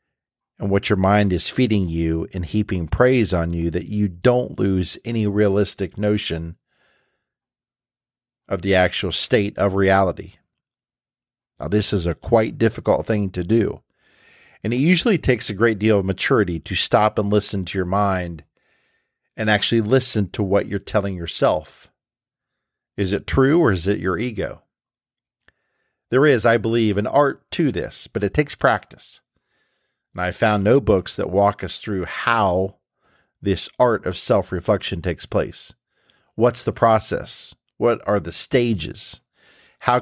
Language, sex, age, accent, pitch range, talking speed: English, male, 50-69, American, 90-110 Hz, 155 wpm